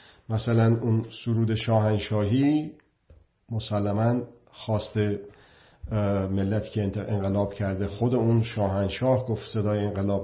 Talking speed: 95 wpm